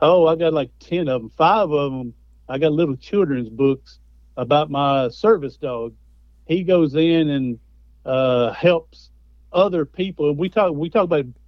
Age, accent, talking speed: 50-69, American, 165 wpm